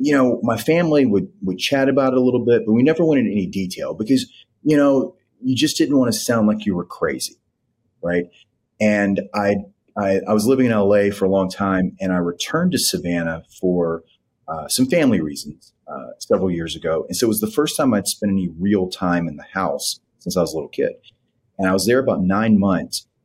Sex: male